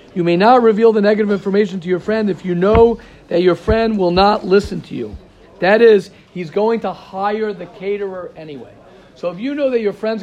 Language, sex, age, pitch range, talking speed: English, male, 50-69, 175-215 Hz, 215 wpm